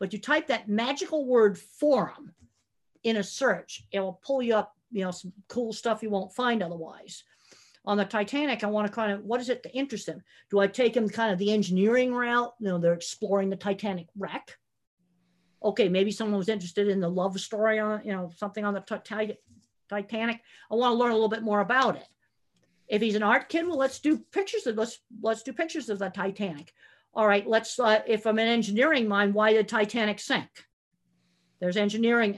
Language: English